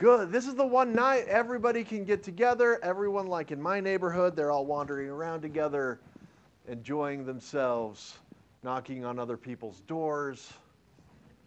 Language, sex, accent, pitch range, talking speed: English, male, American, 115-160 Hz, 140 wpm